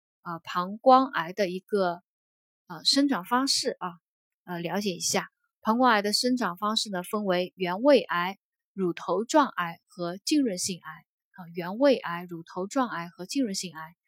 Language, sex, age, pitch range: Chinese, female, 20-39, 180-255 Hz